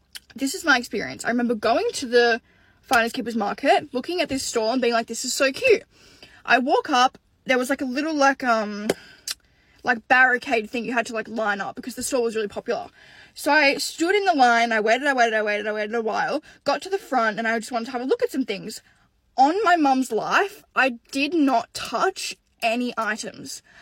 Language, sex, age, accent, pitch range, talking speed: English, female, 10-29, Australian, 230-290 Hz, 225 wpm